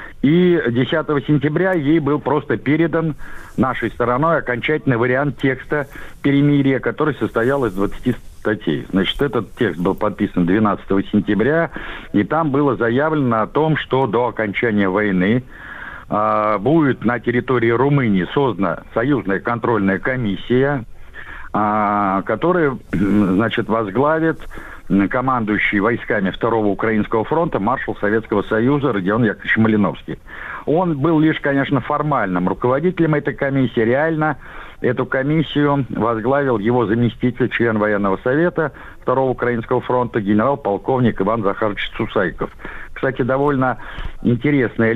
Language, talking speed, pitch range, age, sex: Russian, 115 wpm, 110-140 Hz, 60-79, male